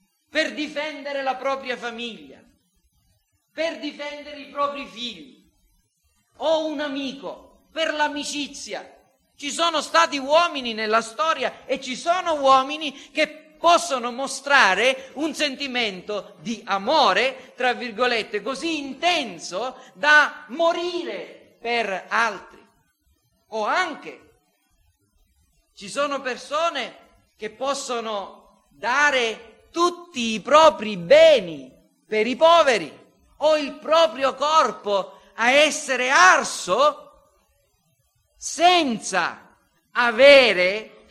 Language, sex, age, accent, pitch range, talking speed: Italian, male, 40-59, native, 225-300 Hz, 95 wpm